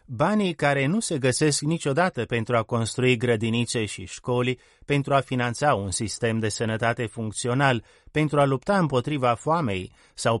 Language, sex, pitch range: Romanian, male, 115-135 Hz